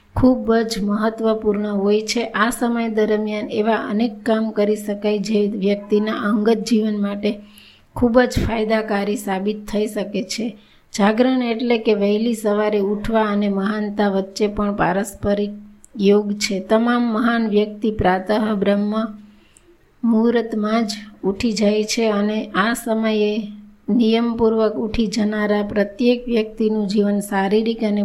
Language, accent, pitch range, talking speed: Gujarati, native, 205-225 Hz, 100 wpm